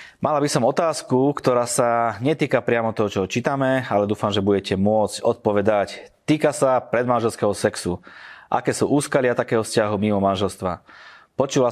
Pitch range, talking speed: 100-120 Hz, 150 wpm